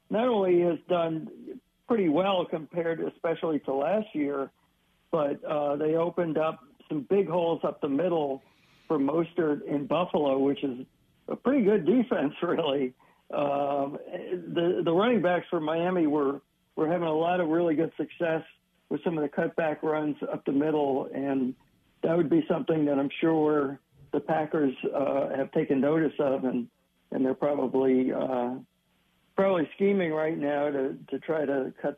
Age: 60-79